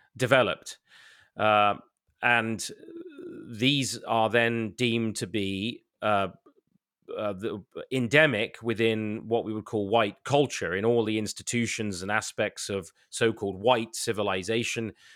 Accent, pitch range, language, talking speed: British, 110-140 Hz, English, 120 wpm